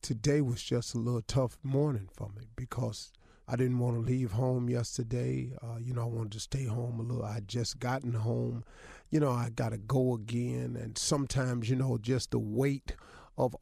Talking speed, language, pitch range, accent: 205 wpm, English, 115-140 Hz, American